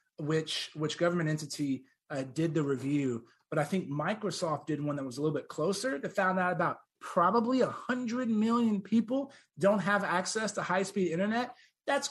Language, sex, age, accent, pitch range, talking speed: English, male, 30-49, American, 160-220 Hz, 180 wpm